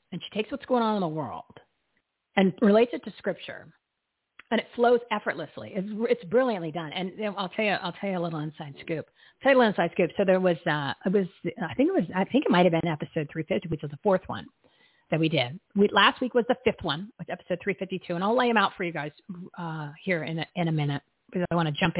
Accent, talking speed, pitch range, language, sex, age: American, 265 wpm, 175-240 Hz, English, female, 40-59